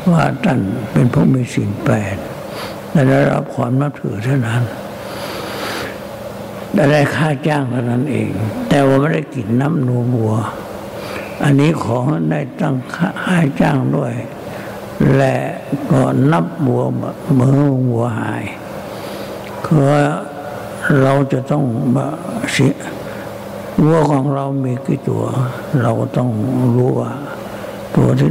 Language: Thai